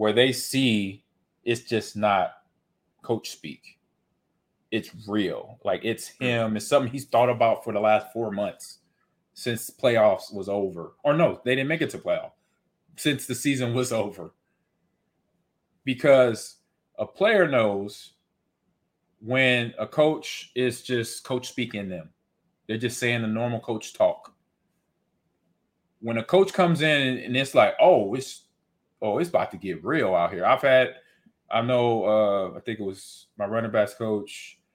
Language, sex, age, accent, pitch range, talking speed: English, male, 30-49, American, 110-140 Hz, 155 wpm